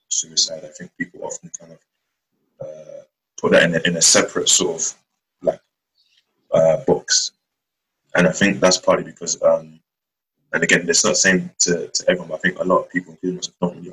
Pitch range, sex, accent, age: 80-90 Hz, male, British, 20-39